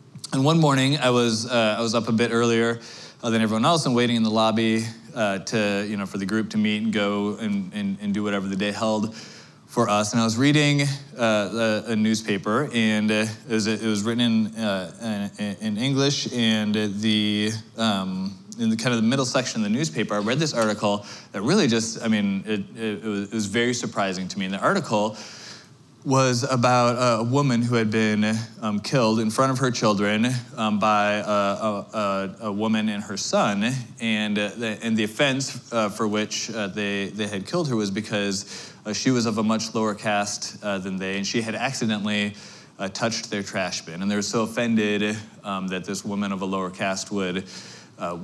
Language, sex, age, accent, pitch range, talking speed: English, male, 20-39, American, 105-120 Hz, 210 wpm